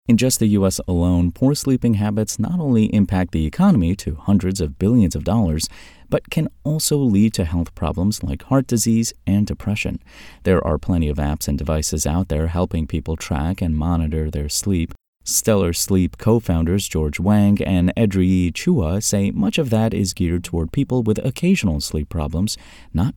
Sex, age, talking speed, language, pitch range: male, 30-49, 180 wpm, English, 80-110 Hz